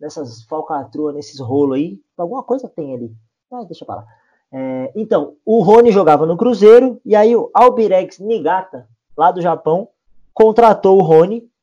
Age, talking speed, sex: 20-39, 155 wpm, male